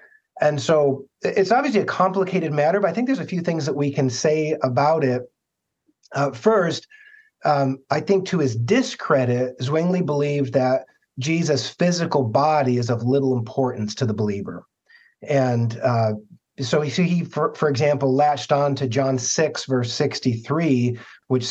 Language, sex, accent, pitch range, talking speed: English, male, American, 130-160 Hz, 155 wpm